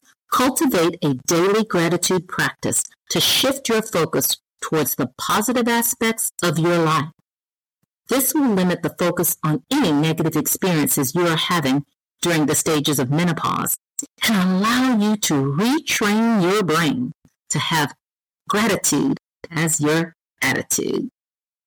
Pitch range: 155-220 Hz